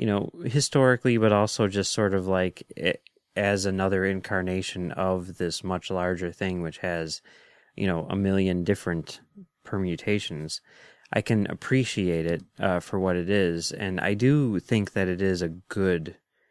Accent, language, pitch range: American, English, 90-110 Hz